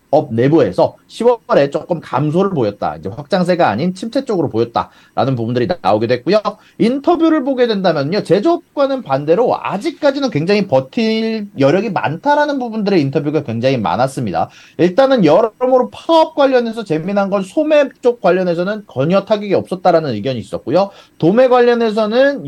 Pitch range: 135-225 Hz